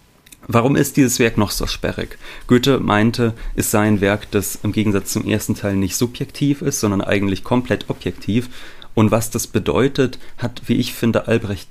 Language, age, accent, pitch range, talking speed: German, 30-49, German, 100-125 Hz, 180 wpm